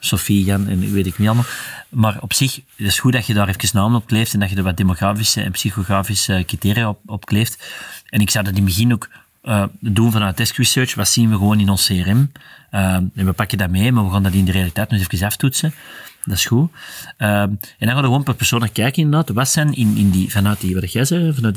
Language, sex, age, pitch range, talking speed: Dutch, male, 30-49, 100-130 Hz, 255 wpm